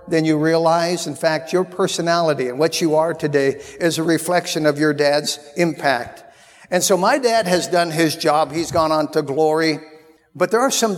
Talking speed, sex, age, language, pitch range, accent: 195 wpm, male, 50-69, English, 155-195 Hz, American